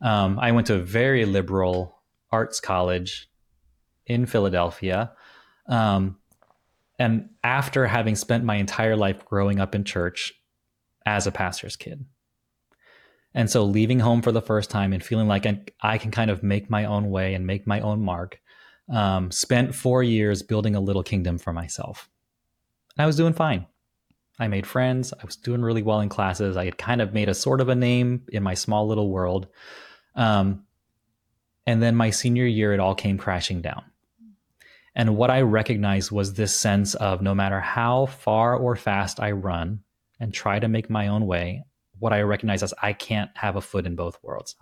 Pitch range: 100-120 Hz